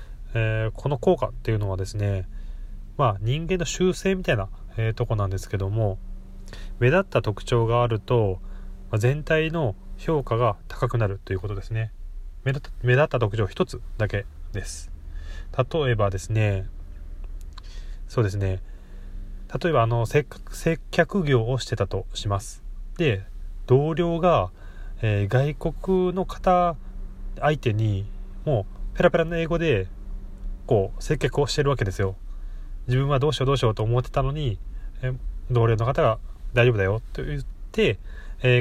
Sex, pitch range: male, 95-135 Hz